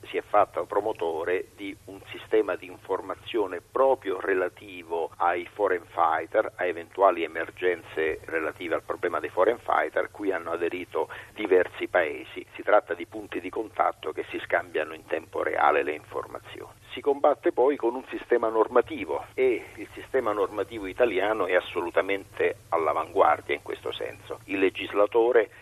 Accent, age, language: native, 50-69, Italian